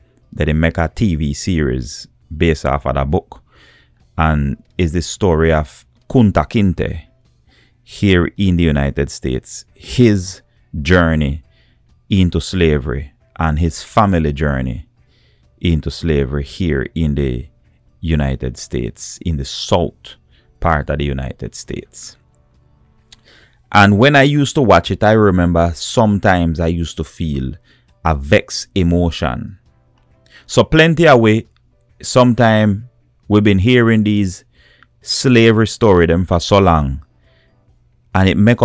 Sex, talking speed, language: male, 120 wpm, English